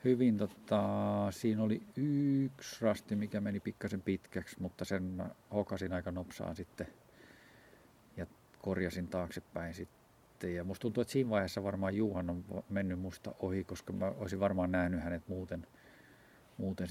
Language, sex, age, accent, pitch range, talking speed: Finnish, male, 50-69, native, 90-105 Hz, 140 wpm